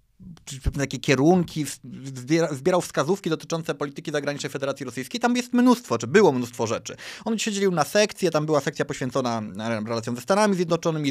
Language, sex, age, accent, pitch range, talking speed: Polish, male, 30-49, native, 135-180 Hz, 155 wpm